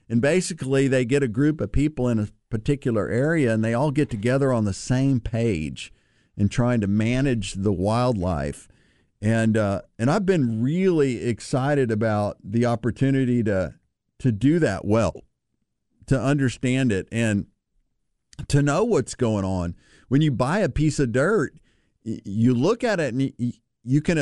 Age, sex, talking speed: 50-69, male, 160 wpm